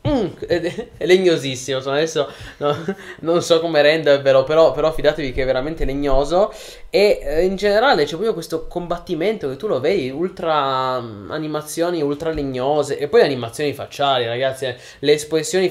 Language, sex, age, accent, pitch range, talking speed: Italian, male, 20-39, native, 125-165 Hz, 155 wpm